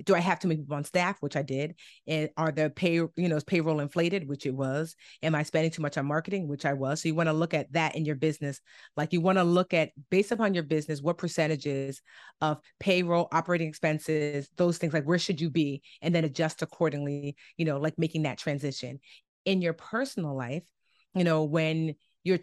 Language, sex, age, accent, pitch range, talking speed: English, female, 30-49, American, 150-175 Hz, 220 wpm